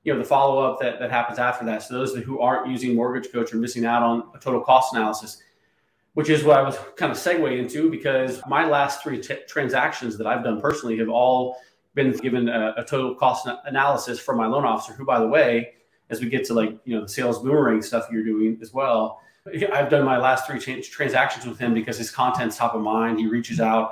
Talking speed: 230 wpm